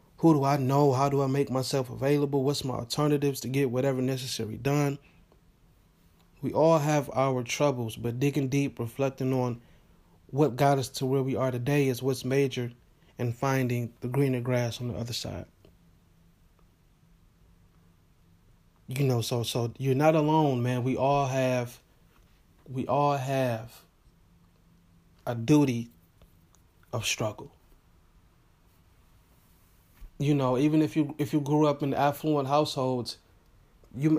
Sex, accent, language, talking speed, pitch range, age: male, American, English, 140 wpm, 110-145 Hz, 30-49